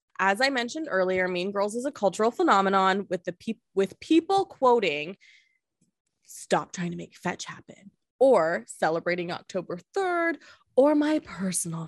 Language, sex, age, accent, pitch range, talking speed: English, female, 20-39, American, 170-240 Hz, 145 wpm